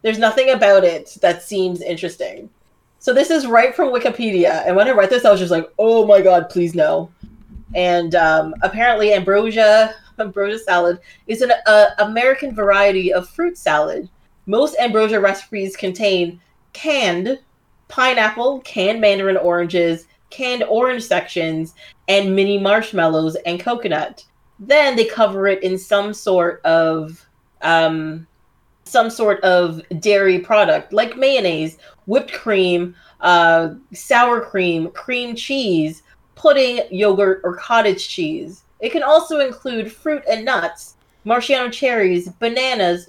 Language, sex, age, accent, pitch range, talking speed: English, female, 30-49, American, 180-245 Hz, 135 wpm